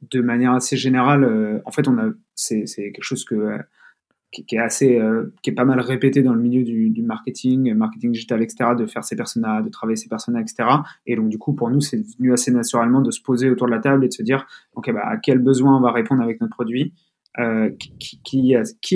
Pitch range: 115-150 Hz